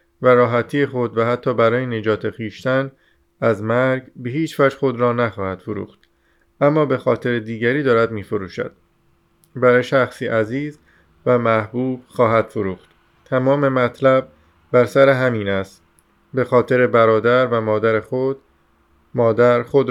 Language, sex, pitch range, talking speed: Persian, male, 110-125 Hz, 135 wpm